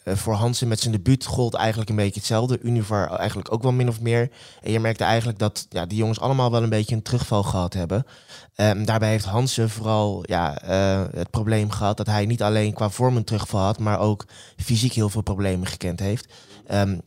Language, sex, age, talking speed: Dutch, male, 20-39, 215 wpm